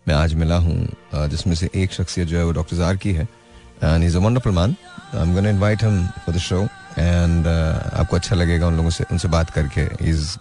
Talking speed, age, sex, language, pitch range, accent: 230 wpm, 30-49, male, Hindi, 85-105 Hz, native